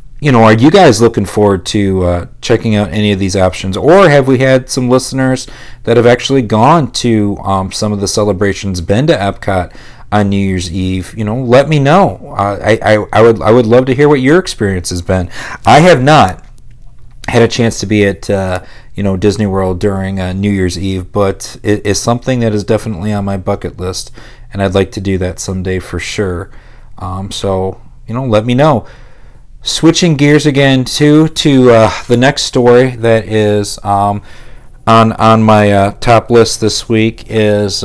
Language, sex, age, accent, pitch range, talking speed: English, male, 40-59, American, 100-120 Hz, 195 wpm